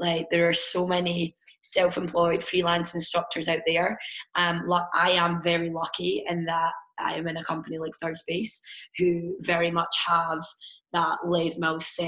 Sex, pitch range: female, 160-175 Hz